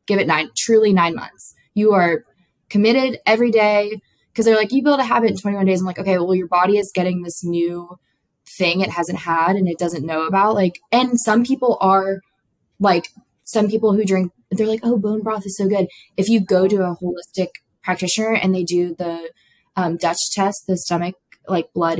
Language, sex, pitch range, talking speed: English, female, 175-215 Hz, 205 wpm